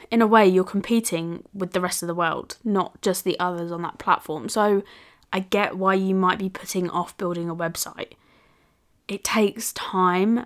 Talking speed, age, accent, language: 190 wpm, 20-39, British, English